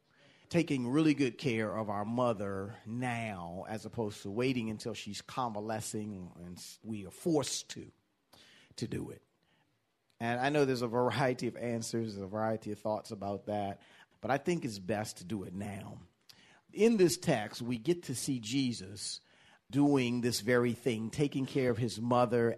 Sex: male